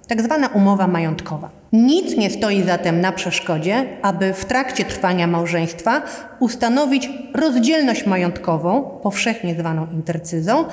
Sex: female